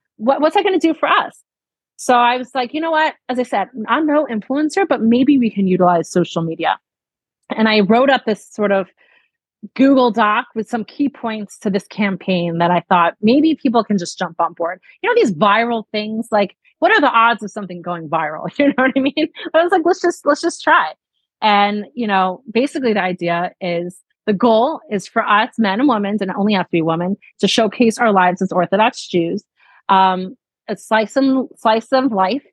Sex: female